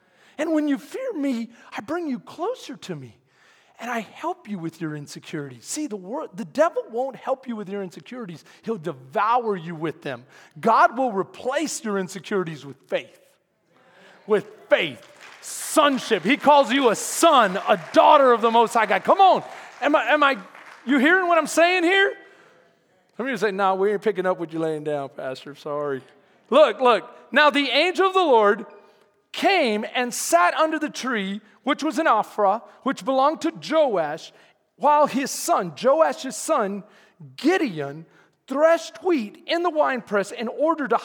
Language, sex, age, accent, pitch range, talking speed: English, male, 40-59, American, 205-315 Hz, 175 wpm